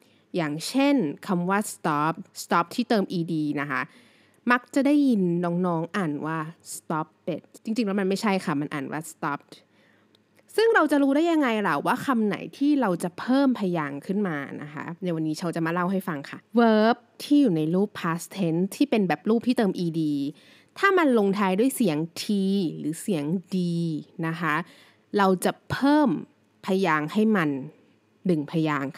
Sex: female